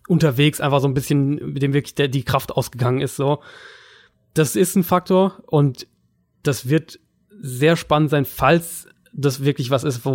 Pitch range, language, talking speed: 130-150 Hz, German, 175 wpm